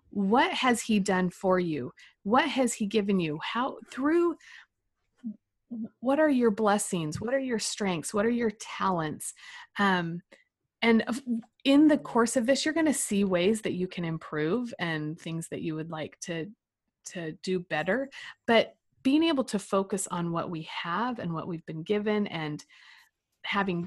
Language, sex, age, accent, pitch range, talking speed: English, female, 30-49, American, 175-255 Hz, 170 wpm